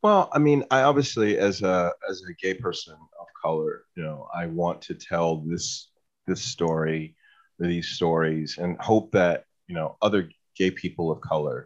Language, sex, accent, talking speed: English, male, American, 175 wpm